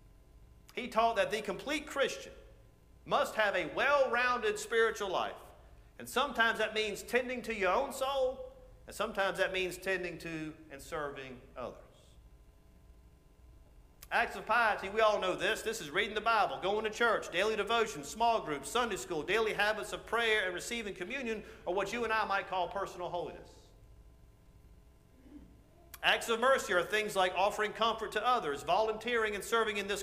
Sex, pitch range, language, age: male, 180-245 Hz, English, 50-69